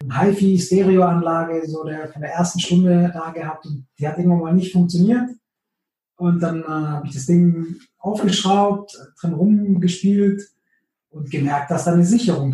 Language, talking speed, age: German, 165 wpm, 20-39